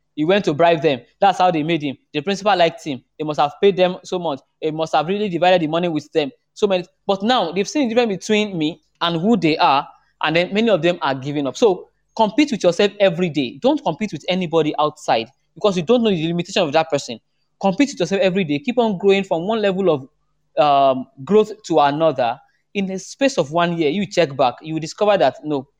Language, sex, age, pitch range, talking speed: English, male, 20-39, 155-215 Hz, 235 wpm